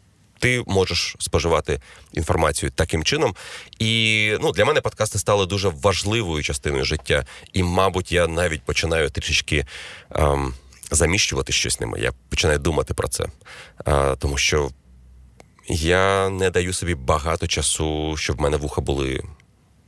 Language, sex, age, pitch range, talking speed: Ukrainian, male, 30-49, 75-95 Hz, 135 wpm